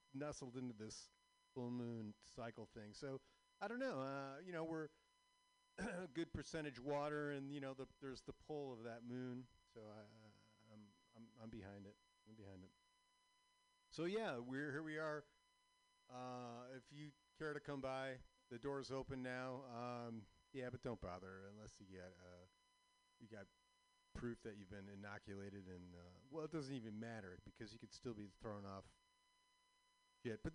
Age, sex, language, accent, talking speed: 40-59, male, English, American, 170 wpm